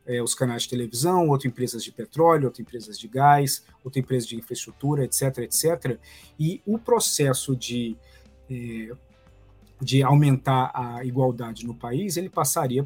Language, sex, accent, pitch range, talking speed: Portuguese, male, Brazilian, 125-160 Hz, 140 wpm